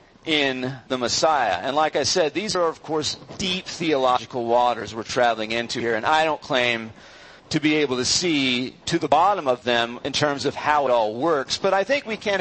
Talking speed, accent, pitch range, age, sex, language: 215 wpm, American, 125-170 Hz, 50-69, male, English